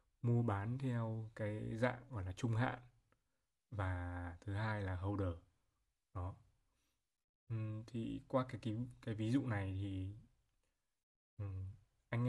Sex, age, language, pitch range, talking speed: male, 20-39, Vietnamese, 100-120 Hz, 120 wpm